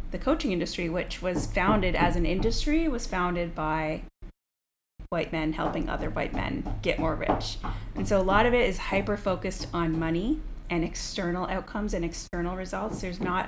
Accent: American